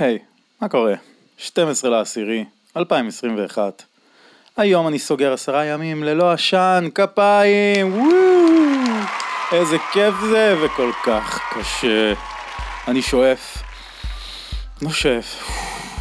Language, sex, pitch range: Hebrew, male, 135-185 Hz